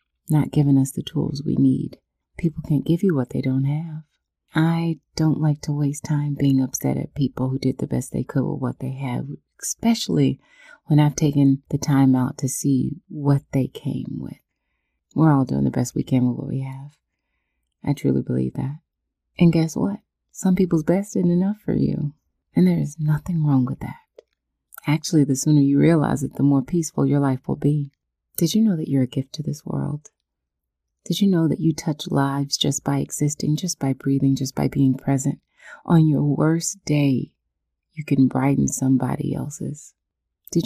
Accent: American